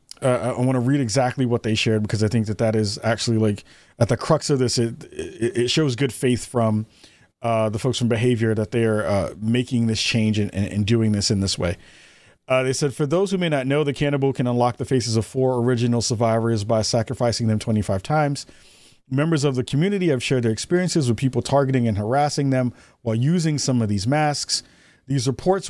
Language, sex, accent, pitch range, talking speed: English, male, American, 110-140 Hz, 215 wpm